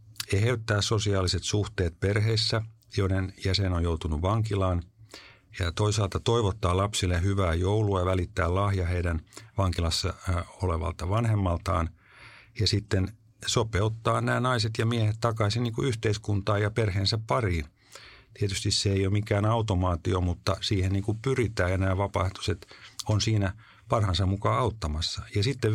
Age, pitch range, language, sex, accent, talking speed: 50-69, 95-115 Hz, Finnish, male, native, 120 wpm